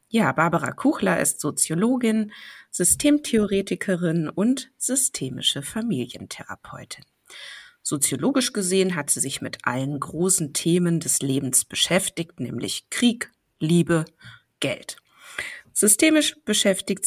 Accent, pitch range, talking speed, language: German, 150-225 Hz, 95 wpm, German